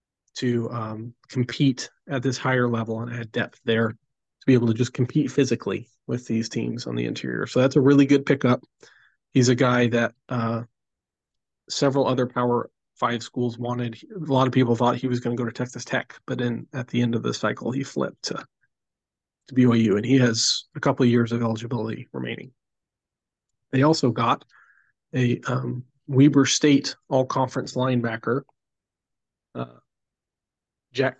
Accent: American